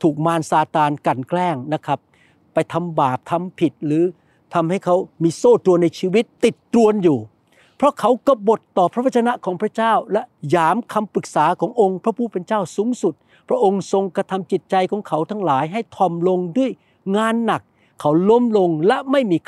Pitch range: 160-215 Hz